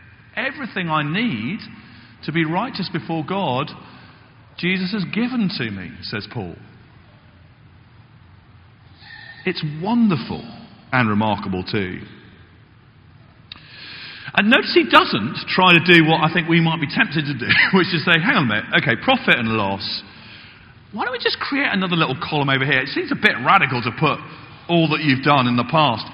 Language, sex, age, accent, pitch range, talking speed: English, male, 40-59, British, 130-215 Hz, 165 wpm